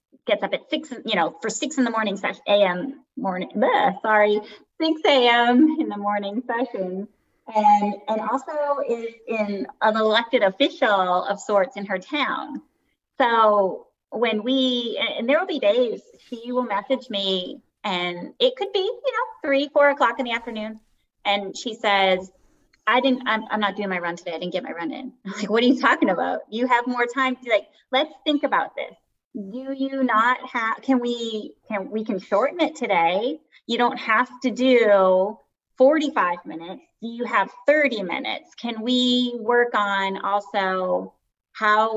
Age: 30-49